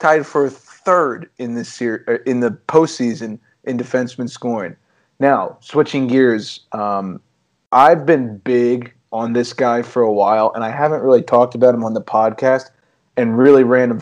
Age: 30-49